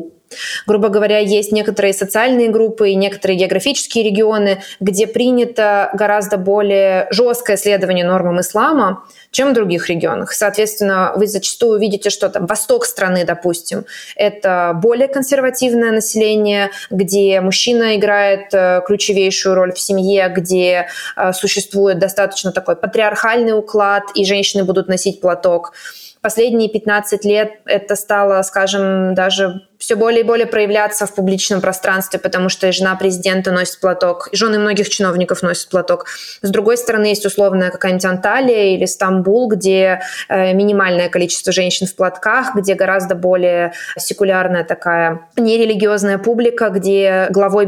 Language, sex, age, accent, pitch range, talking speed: Russian, female, 20-39, native, 190-215 Hz, 130 wpm